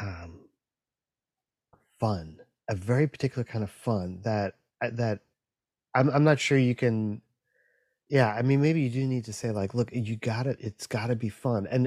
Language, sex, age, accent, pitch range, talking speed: English, male, 30-49, American, 105-130 Hz, 180 wpm